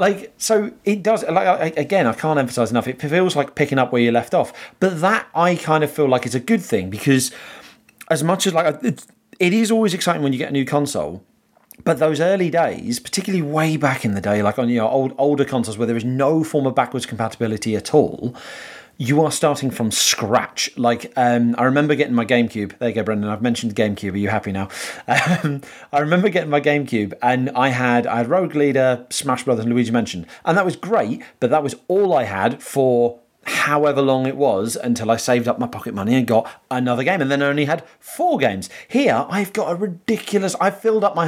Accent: British